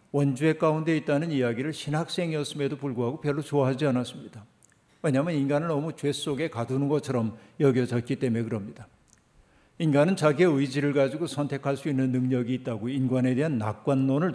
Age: 50-69